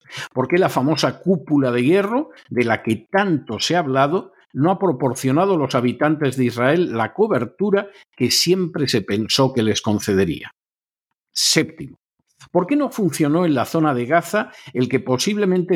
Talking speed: 170 wpm